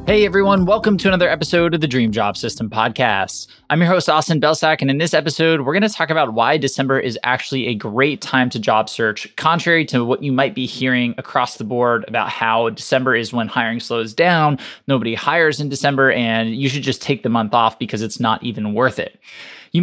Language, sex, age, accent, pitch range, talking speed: English, male, 20-39, American, 120-155 Hz, 220 wpm